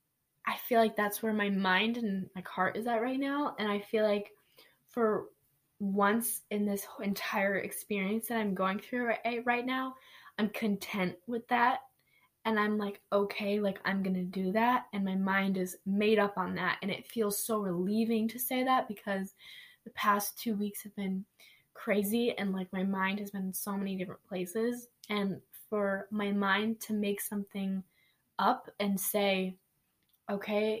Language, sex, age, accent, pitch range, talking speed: English, female, 10-29, American, 195-225 Hz, 175 wpm